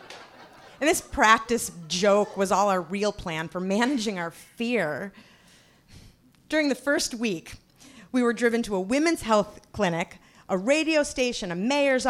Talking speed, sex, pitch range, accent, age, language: 150 wpm, female, 190-255 Hz, American, 30-49, English